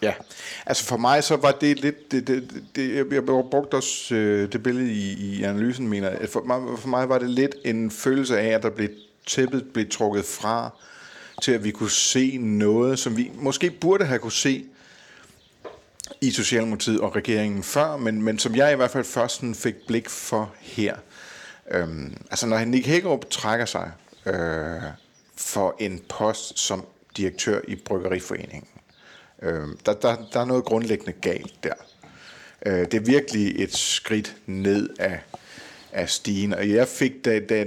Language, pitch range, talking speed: Danish, 100-125 Hz, 165 wpm